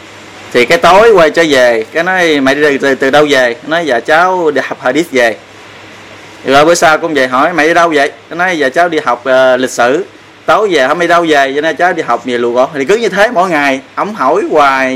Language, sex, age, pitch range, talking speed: Vietnamese, male, 20-39, 130-160 Hz, 250 wpm